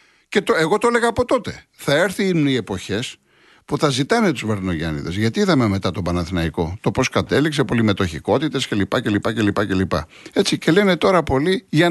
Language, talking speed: Greek, 160 wpm